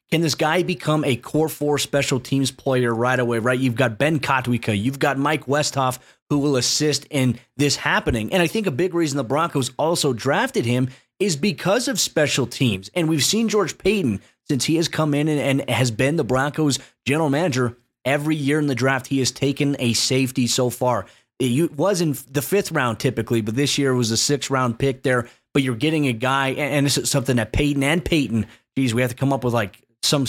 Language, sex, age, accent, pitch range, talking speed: English, male, 30-49, American, 125-150 Hz, 220 wpm